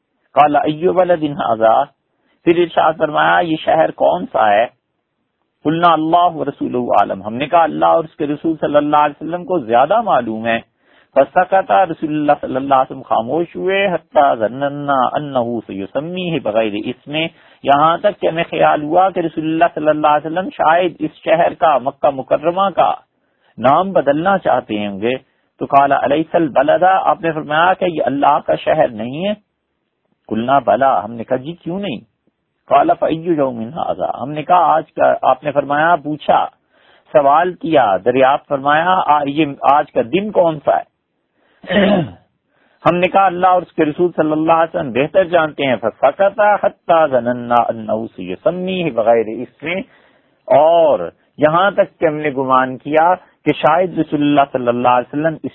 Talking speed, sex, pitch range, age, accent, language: 140 wpm, male, 130-175 Hz, 50-69, Indian, English